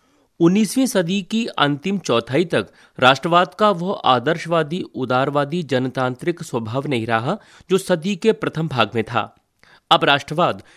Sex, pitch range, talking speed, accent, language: male, 120-170 Hz, 135 wpm, native, Hindi